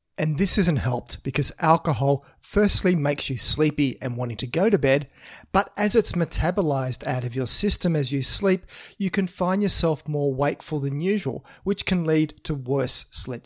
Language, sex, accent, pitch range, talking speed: English, male, Australian, 130-170 Hz, 185 wpm